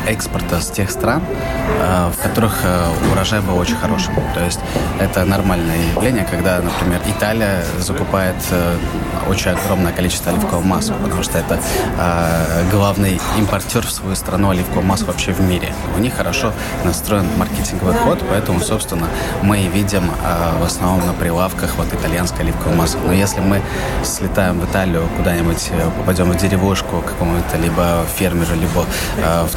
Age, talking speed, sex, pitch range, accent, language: 20-39, 140 wpm, male, 85-100 Hz, native, Russian